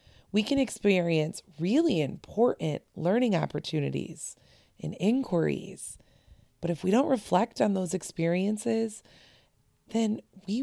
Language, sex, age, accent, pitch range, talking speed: English, female, 30-49, American, 155-215 Hz, 105 wpm